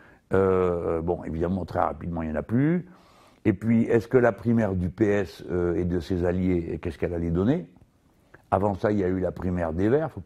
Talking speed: 240 wpm